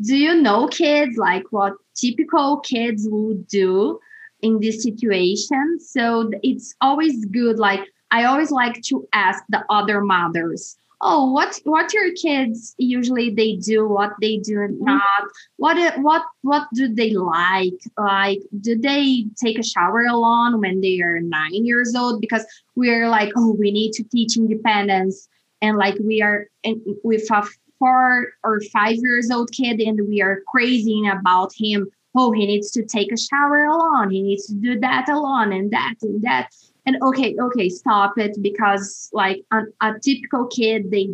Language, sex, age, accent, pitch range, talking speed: Portuguese, female, 20-39, Brazilian, 205-250 Hz, 165 wpm